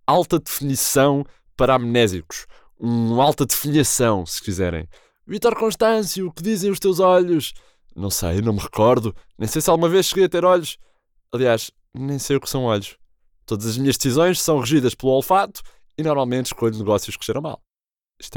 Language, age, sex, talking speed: Portuguese, 20-39, male, 175 wpm